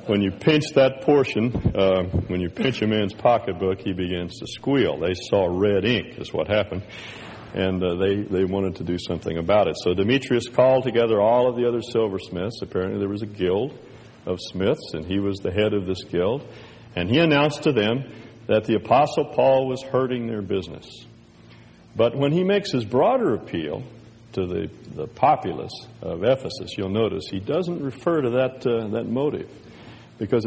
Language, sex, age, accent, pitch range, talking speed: English, male, 60-79, American, 95-130 Hz, 185 wpm